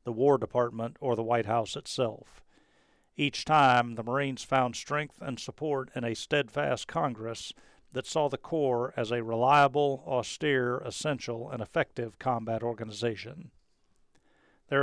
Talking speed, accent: 140 wpm, American